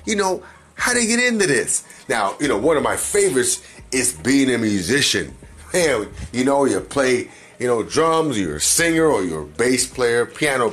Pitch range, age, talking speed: 135-200 Hz, 30-49, 195 wpm